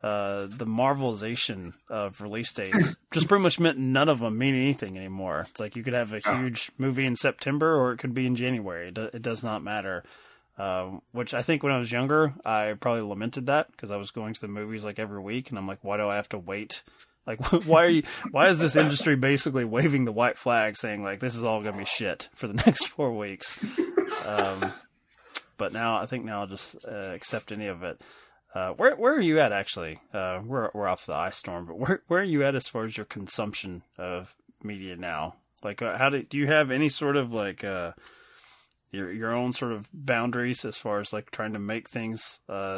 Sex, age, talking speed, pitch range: male, 20-39, 225 wpm, 105-135 Hz